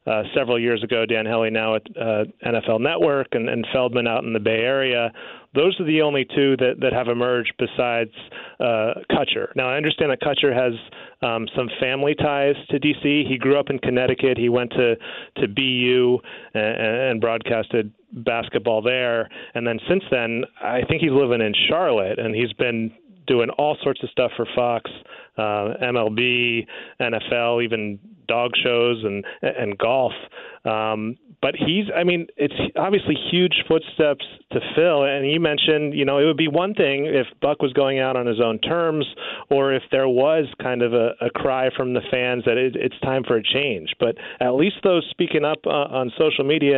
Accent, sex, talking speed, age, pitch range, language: American, male, 185 wpm, 30-49, 115-145 Hz, English